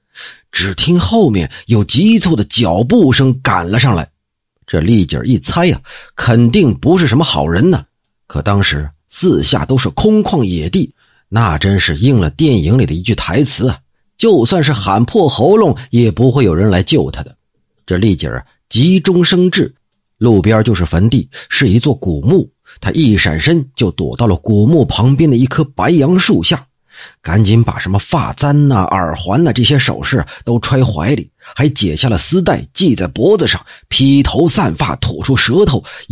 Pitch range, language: 100-150 Hz, Chinese